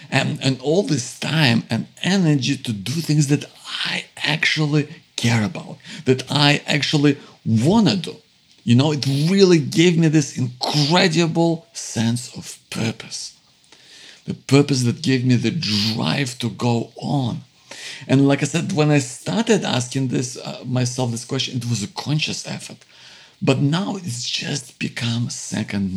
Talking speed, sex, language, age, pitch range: 150 wpm, male, English, 50-69, 120-150 Hz